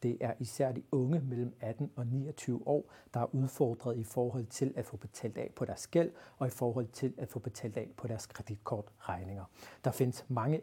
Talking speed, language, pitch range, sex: 210 wpm, Danish, 115-140 Hz, male